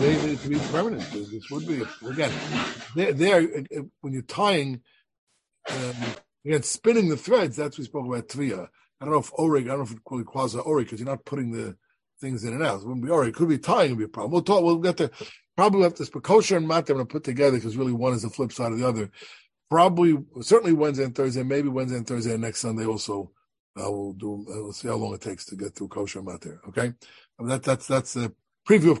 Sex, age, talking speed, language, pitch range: male, 60-79, 250 wpm, English, 120-150 Hz